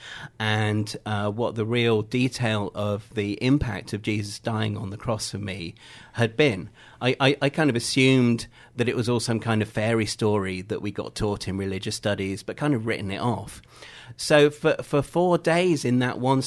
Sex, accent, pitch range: male, British, 110-130 Hz